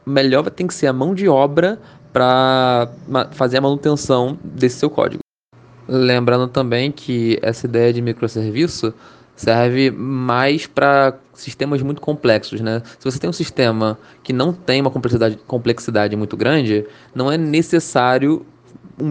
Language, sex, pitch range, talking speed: Portuguese, male, 120-145 Hz, 150 wpm